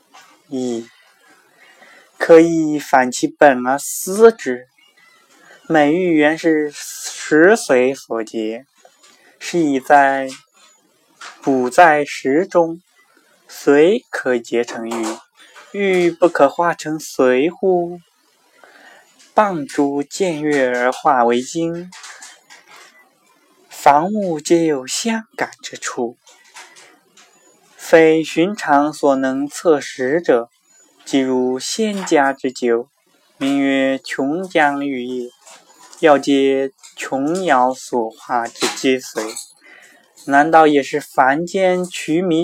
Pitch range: 130-170 Hz